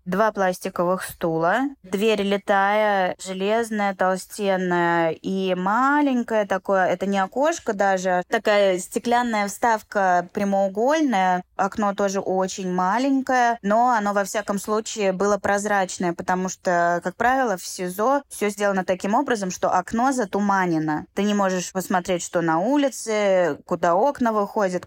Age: 20-39